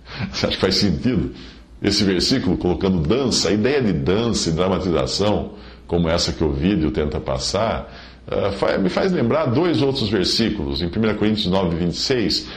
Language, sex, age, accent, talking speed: English, male, 50-69, Brazilian, 160 wpm